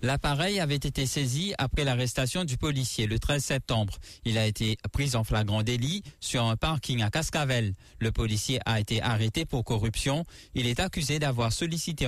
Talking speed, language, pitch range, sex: 175 wpm, English, 115-145 Hz, male